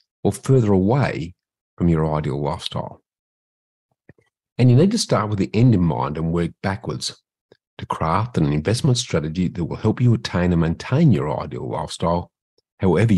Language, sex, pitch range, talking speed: English, male, 80-115 Hz, 165 wpm